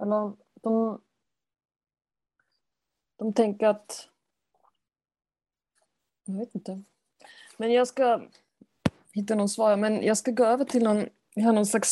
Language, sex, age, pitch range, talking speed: Swedish, female, 30-49, 200-240 Hz, 120 wpm